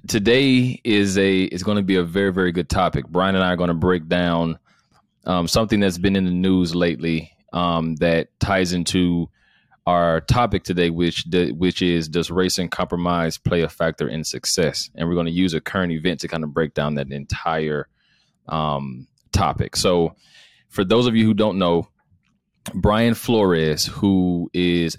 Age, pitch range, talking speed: 30-49, 85-100 Hz, 180 wpm